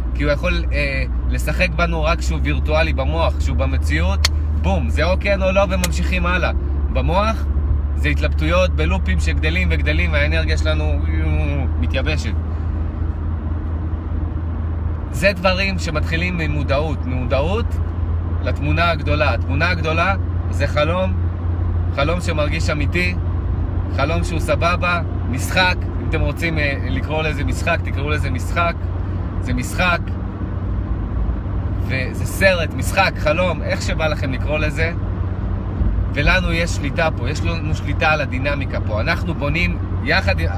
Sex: male